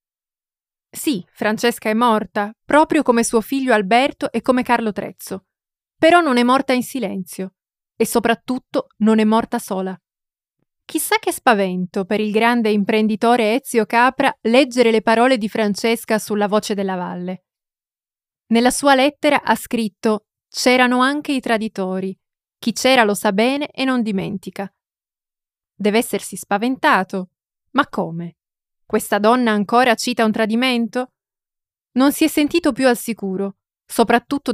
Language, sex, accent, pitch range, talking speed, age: Italian, female, native, 205-250 Hz, 135 wpm, 20-39